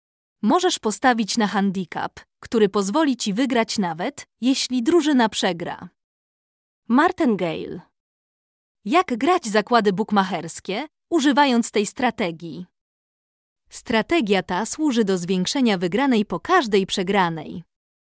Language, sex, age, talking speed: Polish, female, 20-39, 100 wpm